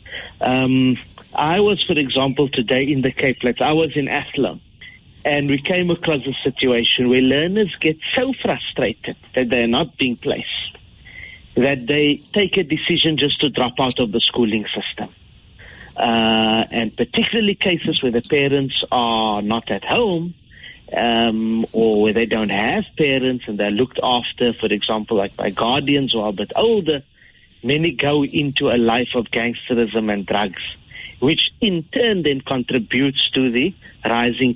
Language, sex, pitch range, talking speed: English, male, 115-150 Hz, 160 wpm